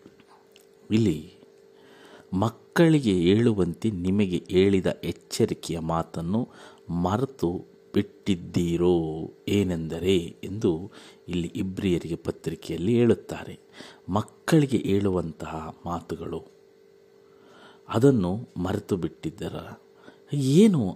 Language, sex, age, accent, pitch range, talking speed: Kannada, male, 50-69, native, 85-120 Hz, 65 wpm